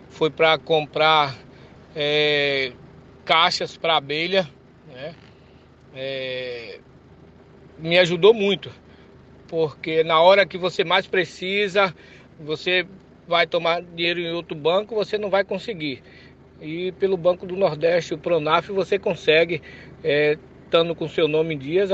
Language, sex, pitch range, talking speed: Portuguese, male, 155-190 Hz, 125 wpm